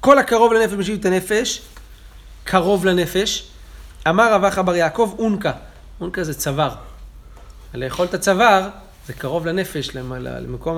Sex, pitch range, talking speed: male, 130-190 Hz, 140 wpm